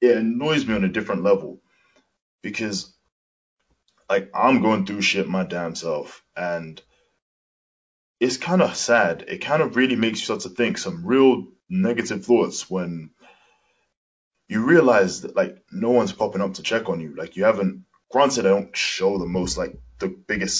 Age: 10-29